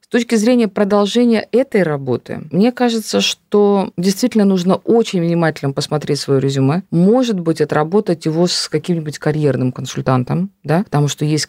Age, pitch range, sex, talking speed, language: 50-69, 150-200 Hz, female, 145 wpm, Russian